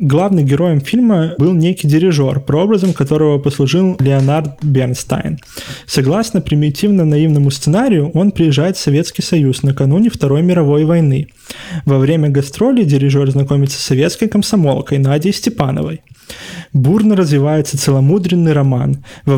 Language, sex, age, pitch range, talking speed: Russian, male, 20-39, 135-160 Hz, 120 wpm